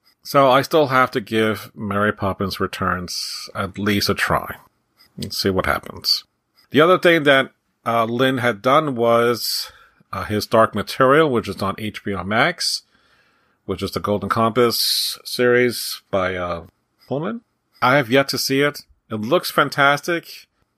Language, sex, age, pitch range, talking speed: English, male, 40-59, 100-125 Hz, 155 wpm